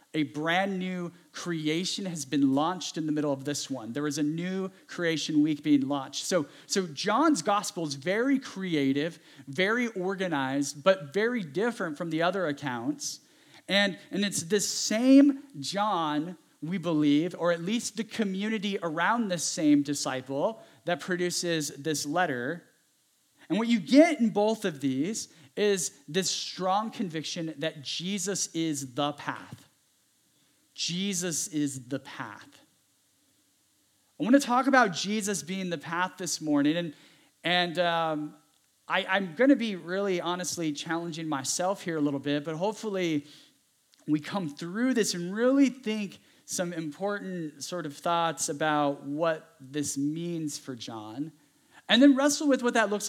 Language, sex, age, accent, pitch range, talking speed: English, male, 40-59, American, 150-200 Hz, 150 wpm